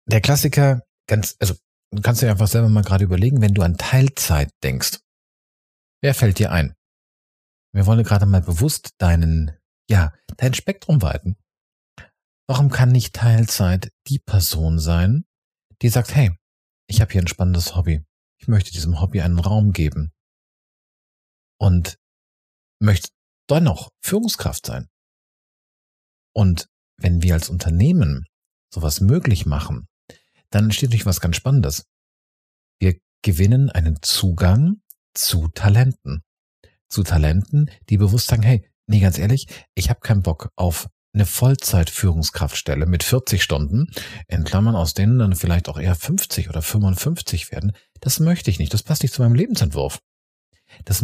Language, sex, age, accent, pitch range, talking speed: German, male, 40-59, German, 80-115 Hz, 145 wpm